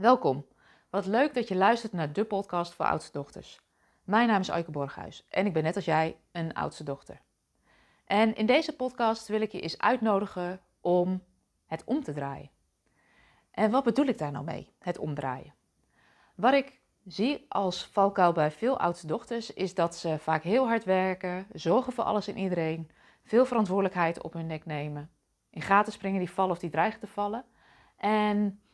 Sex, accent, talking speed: female, Dutch, 180 wpm